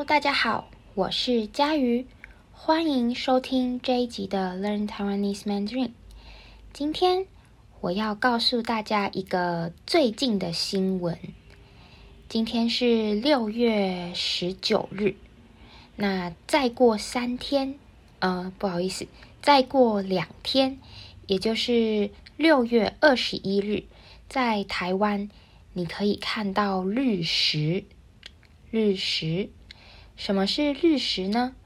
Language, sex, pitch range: Chinese, female, 185-250 Hz